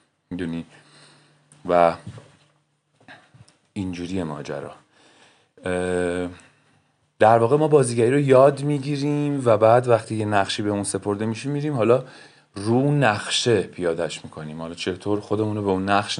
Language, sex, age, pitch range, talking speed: Persian, male, 30-49, 90-115 Hz, 120 wpm